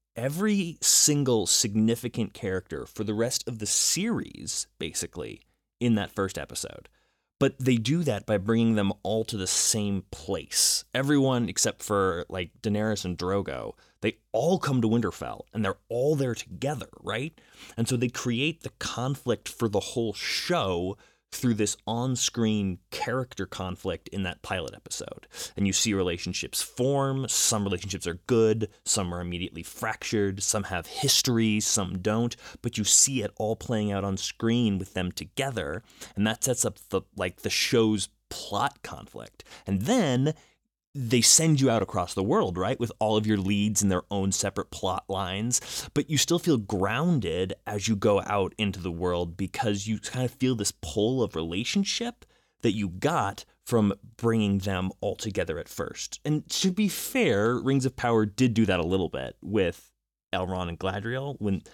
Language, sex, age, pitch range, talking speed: English, male, 20-39, 95-125 Hz, 170 wpm